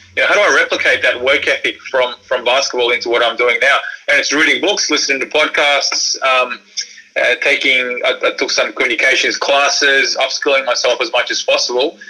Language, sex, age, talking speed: English, male, 20-39, 195 wpm